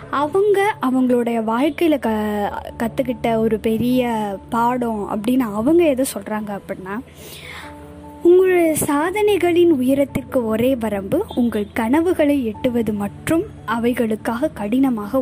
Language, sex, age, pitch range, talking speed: Tamil, female, 20-39, 215-290 Hz, 95 wpm